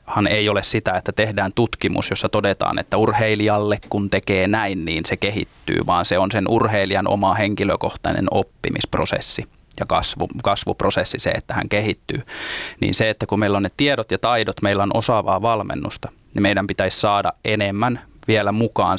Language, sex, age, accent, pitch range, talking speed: Finnish, male, 20-39, native, 100-110 Hz, 170 wpm